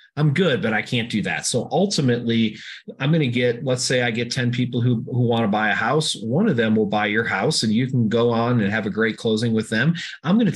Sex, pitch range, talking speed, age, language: male, 105-125 Hz, 275 wpm, 30-49, English